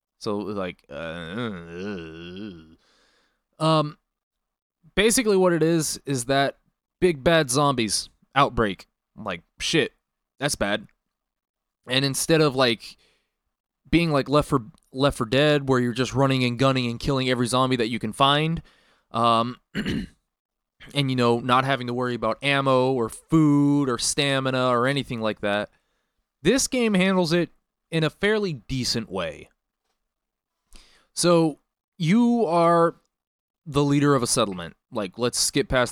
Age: 20-39